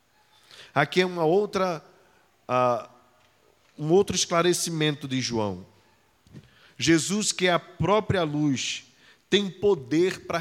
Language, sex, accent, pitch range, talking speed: Portuguese, male, Brazilian, 155-205 Hz, 90 wpm